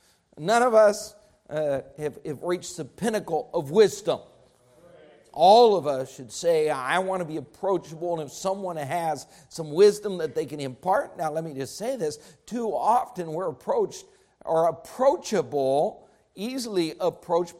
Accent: American